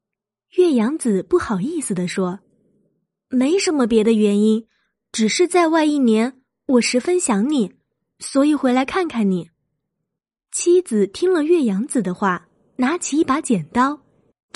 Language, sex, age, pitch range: Chinese, female, 20-39, 210-330 Hz